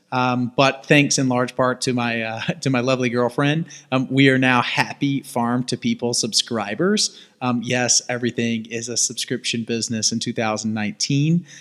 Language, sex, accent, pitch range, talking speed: English, male, American, 120-135 Hz, 160 wpm